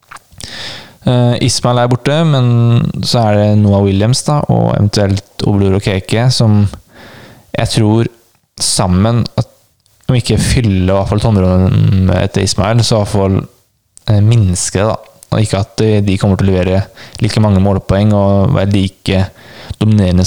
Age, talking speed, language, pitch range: 20-39, 150 wpm, English, 95-115 Hz